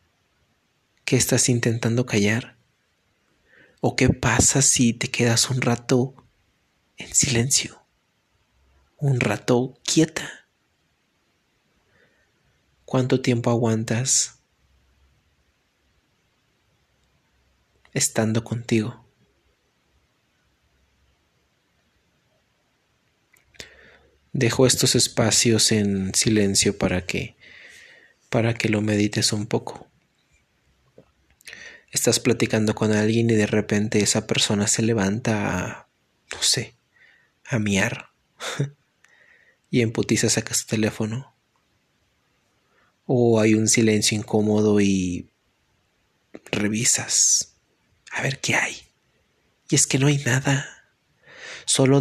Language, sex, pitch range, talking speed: Spanish, male, 105-125 Hz, 85 wpm